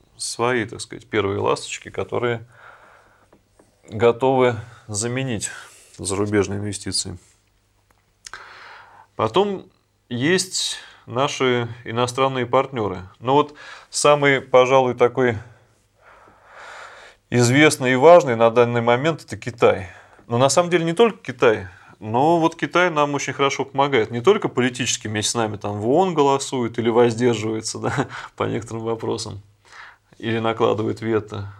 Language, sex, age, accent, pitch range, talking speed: Russian, male, 30-49, native, 105-130 Hz, 115 wpm